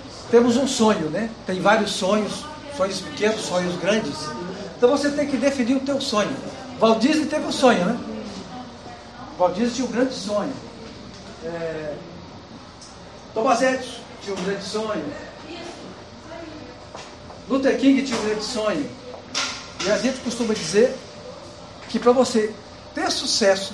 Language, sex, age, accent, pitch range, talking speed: Spanish, male, 60-79, Brazilian, 200-260 Hz, 135 wpm